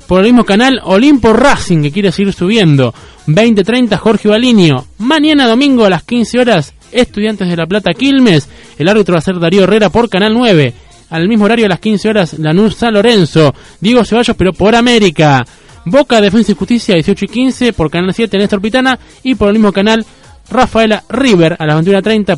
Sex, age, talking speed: male, 20-39, 195 wpm